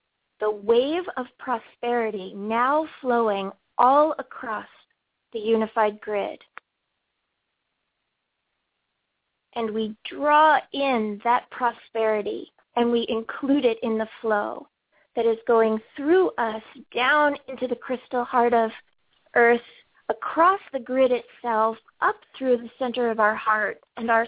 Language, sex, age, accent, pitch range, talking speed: English, female, 30-49, American, 225-255 Hz, 120 wpm